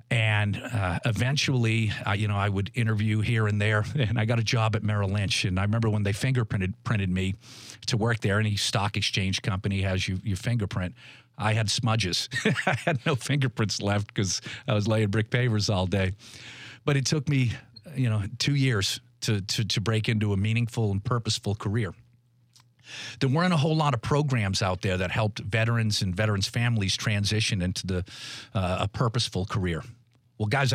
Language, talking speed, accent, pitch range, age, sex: English, 190 wpm, American, 110-135 Hz, 40-59, male